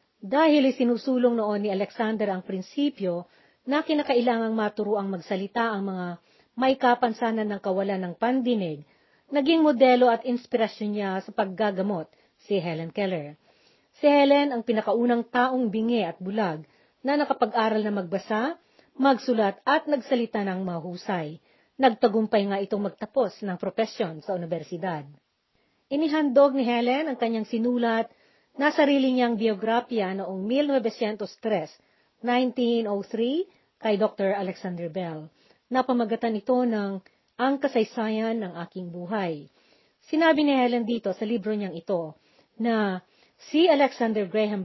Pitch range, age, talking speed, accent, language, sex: 195-255 Hz, 40-59, 120 wpm, native, Filipino, female